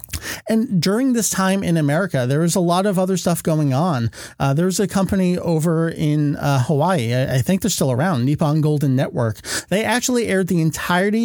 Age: 40-59